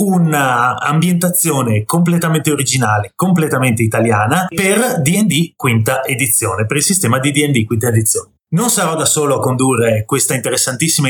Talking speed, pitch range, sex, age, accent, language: 130 wpm, 125-165 Hz, male, 30-49, native, Italian